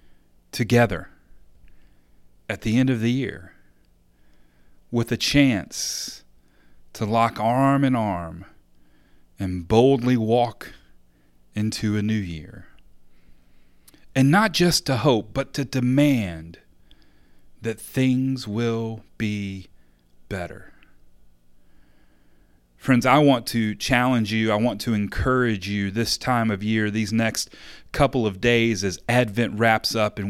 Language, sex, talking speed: English, male, 120 wpm